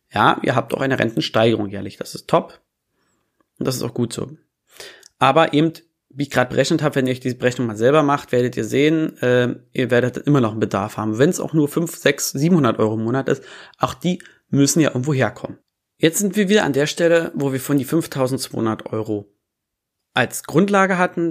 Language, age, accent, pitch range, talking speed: German, 30-49, German, 120-150 Hz, 210 wpm